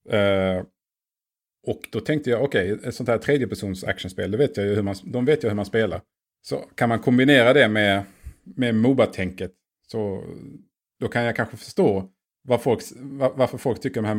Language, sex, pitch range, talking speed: English, male, 95-125 Hz, 195 wpm